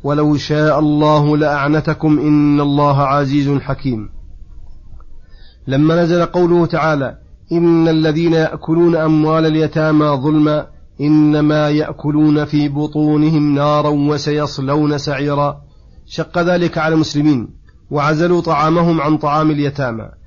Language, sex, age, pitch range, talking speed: Arabic, male, 40-59, 145-160 Hz, 100 wpm